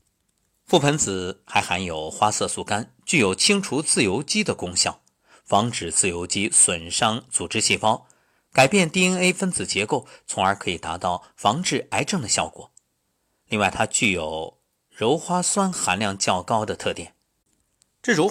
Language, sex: Chinese, male